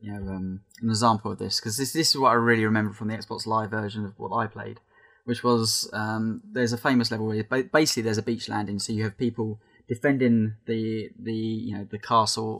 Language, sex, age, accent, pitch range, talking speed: English, male, 10-29, British, 110-115 Hz, 235 wpm